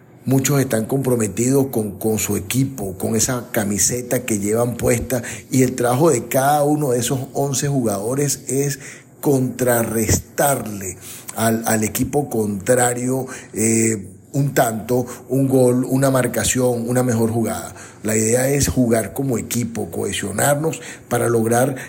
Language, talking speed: Spanish, 130 wpm